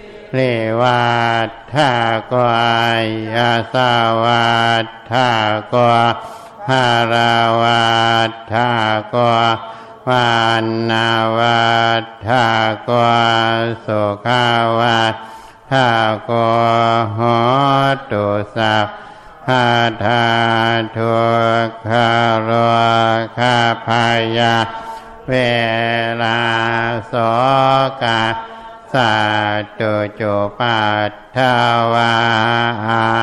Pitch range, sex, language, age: 115-120 Hz, male, Thai, 60-79